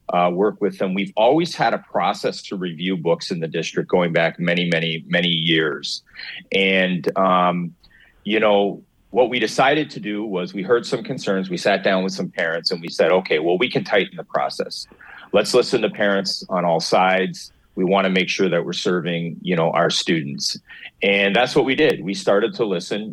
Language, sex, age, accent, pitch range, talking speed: English, male, 40-59, American, 90-105 Hz, 200 wpm